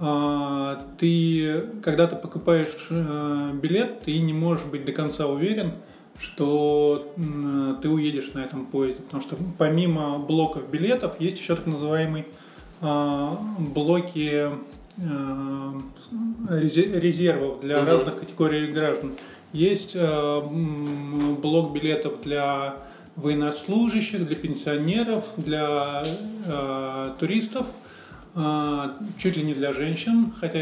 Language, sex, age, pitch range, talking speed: Russian, male, 20-39, 145-170 Hz, 95 wpm